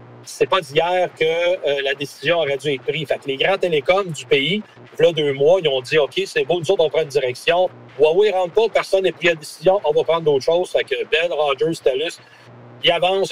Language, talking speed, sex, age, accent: French, 265 wpm, male, 40-59, Canadian